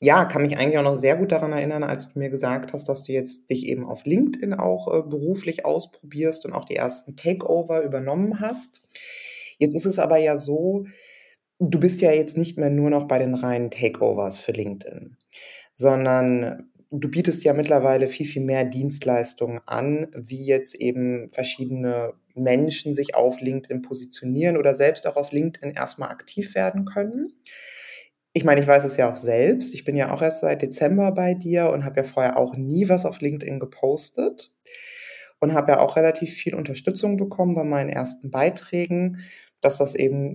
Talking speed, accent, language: 180 wpm, German, German